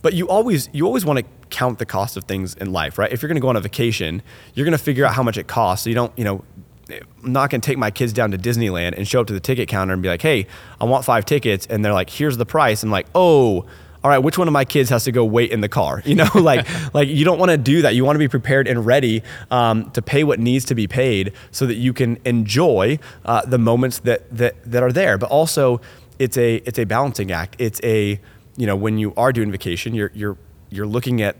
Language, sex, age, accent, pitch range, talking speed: English, male, 20-39, American, 100-130 Hz, 280 wpm